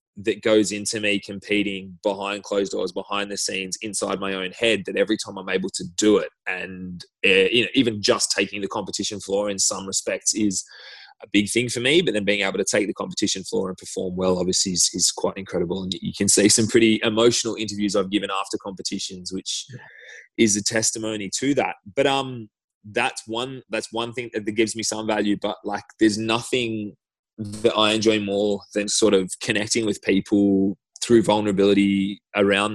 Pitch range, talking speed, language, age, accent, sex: 100-115 Hz, 195 wpm, English, 20-39, Australian, male